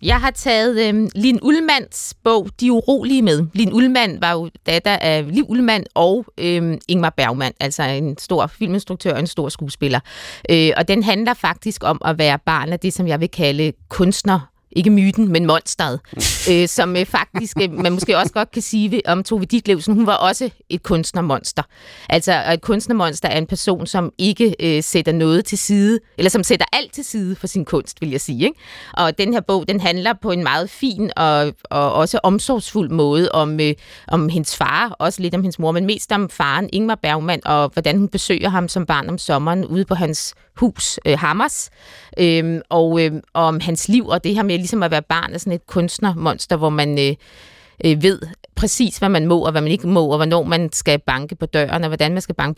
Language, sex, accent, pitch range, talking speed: Danish, female, native, 160-205 Hz, 200 wpm